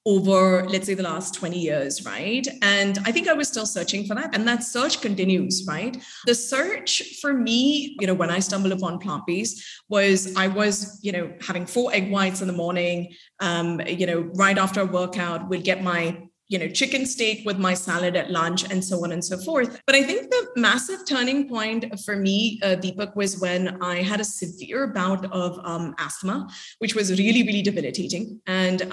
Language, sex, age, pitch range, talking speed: English, female, 30-49, 180-220 Hz, 205 wpm